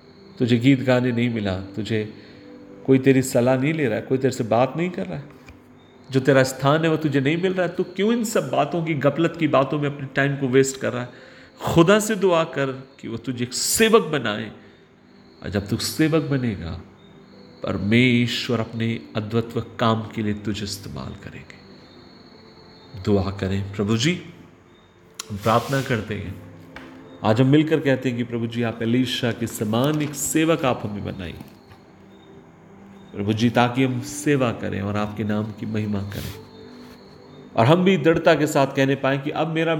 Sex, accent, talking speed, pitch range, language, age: male, native, 175 wpm, 110-150 Hz, Hindi, 40-59